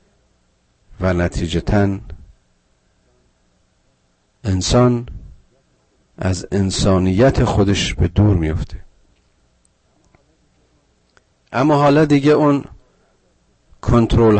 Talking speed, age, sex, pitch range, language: 65 wpm, 50-69, male, 85-105 Hz, Persian